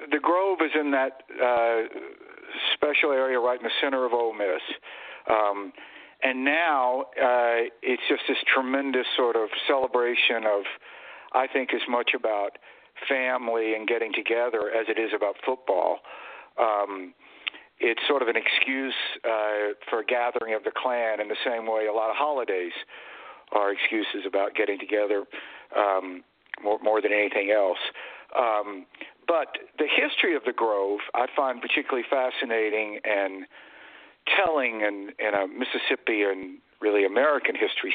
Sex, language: male, English